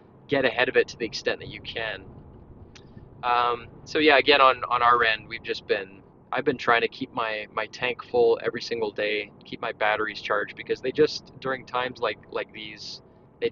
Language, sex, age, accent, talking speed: English, male, 20-39, American, 205 wpm